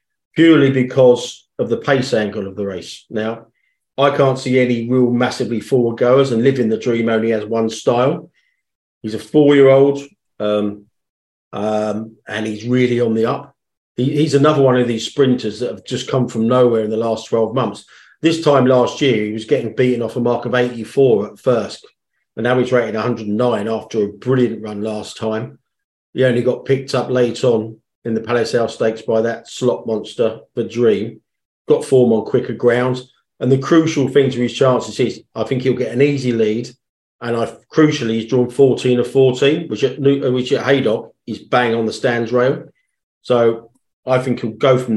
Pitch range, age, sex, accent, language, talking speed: 110-130 Hz, 40-59, male, British, English, 190 wpm